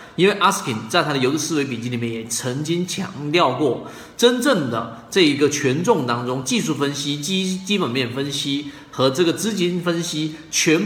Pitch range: 125-190 Hz